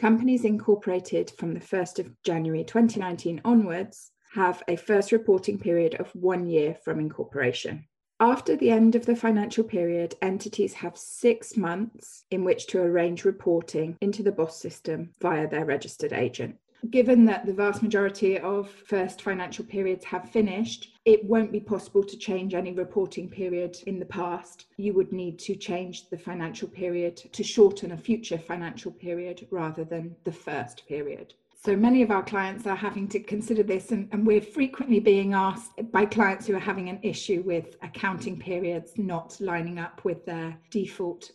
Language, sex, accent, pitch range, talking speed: English, female, British, 175-210 Hz, 170 wpm